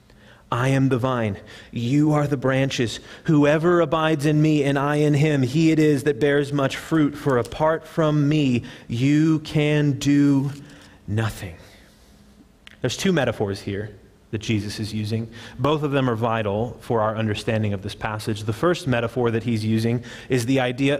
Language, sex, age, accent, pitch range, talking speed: English, male, 30-49, American, 115-155 Hz, 170 wpm